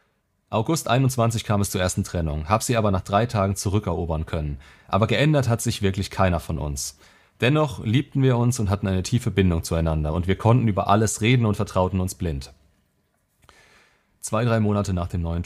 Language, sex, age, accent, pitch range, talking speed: German, male, 30-49, German, 90-115 Hz, 190 wpm